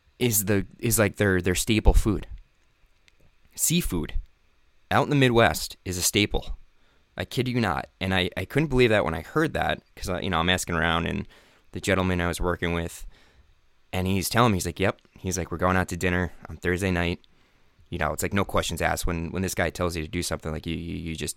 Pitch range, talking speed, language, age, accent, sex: 80-100 Hz, 225 wpm, English, 20-39, American, male